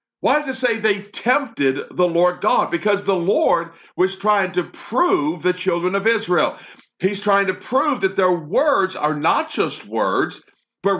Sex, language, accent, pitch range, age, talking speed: male, English, American, 175-235 Hz, 50-69, 175 wpm